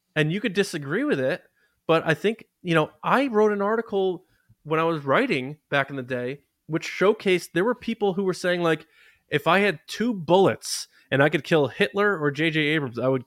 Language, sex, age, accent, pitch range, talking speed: English, male, 20-39, American, 130-165 Hz, 215 wpm